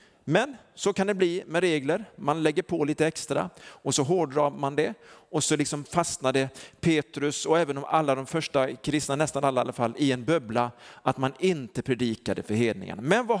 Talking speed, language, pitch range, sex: 195 wpm, Swedish, 125-170 Hz, male